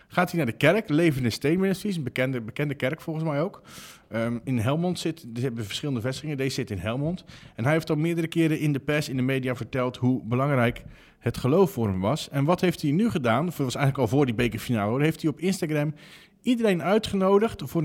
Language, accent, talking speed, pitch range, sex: Dutch, Dutch, 225 wpm, 125-175 Hz, male